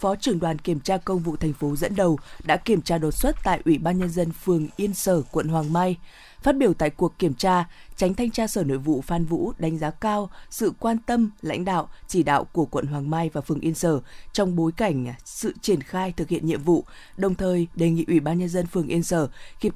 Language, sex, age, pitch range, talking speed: Vietnamese, female, 20-39, 160-190 Hz, 245 wpm